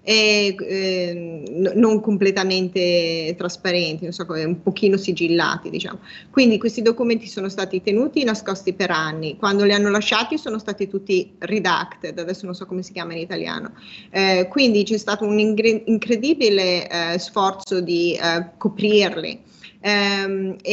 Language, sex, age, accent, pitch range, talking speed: Italian, female, 30-49, native, 180-210 Hz, 145 wpm